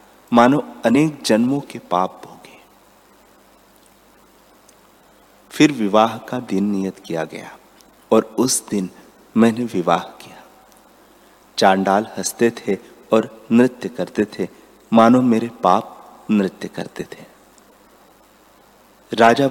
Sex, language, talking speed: male, Hindi, 100 wpm